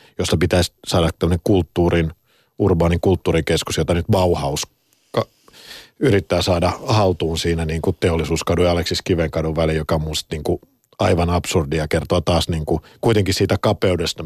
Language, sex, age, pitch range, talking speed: Finnish, male, 50-69, 80-95 Hz, 145 wpm